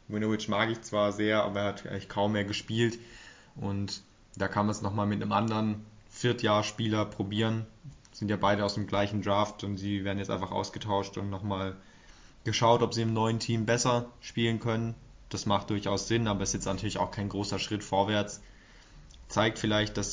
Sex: male